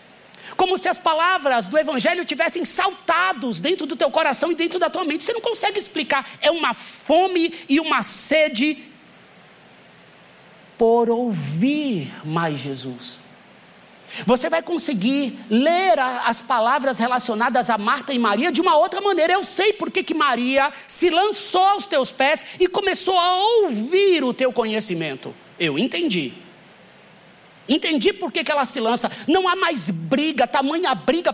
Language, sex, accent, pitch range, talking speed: Portuguese, male, Brazilian, 235-330 Hz, 145 wpm